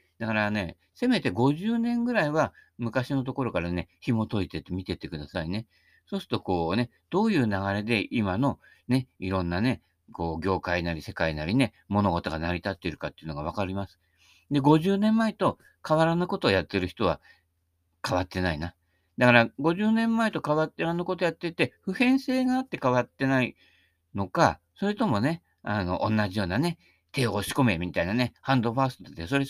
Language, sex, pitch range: Japanese, male, 90-150 Hz